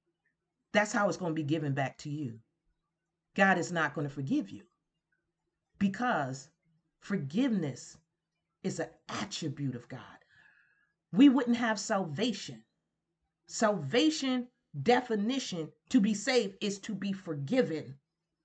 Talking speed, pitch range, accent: 120 wpm, 160-235 Hz, American